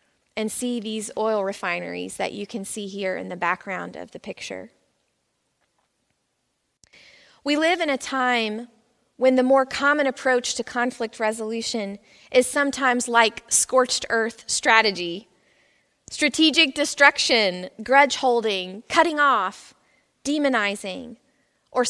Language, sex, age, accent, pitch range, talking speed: English, female, 20-39, American, 205-255 Hz, 120 wpm